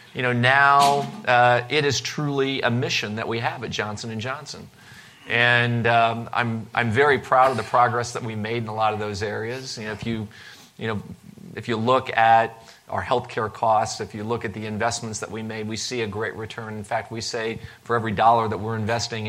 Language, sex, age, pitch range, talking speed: English, male, 40-59, 110-125 Hz, 220 wpm